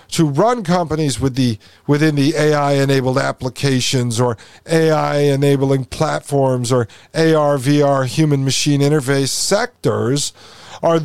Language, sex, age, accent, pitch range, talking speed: English, male, 50-69, American, 125-175 Hz, 120 wpm